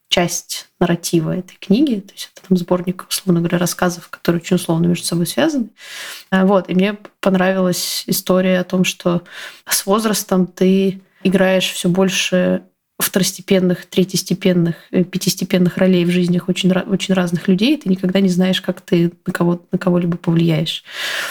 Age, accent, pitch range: 20-39, native, 180-195 Hz